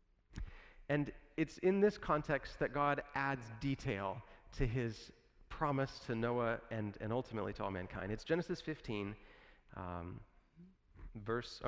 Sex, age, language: male, 30-49, English